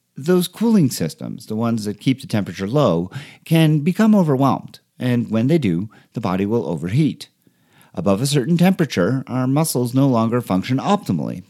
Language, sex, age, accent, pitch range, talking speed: English, male, 50-69, American, 115-170 Hz, 160 wpm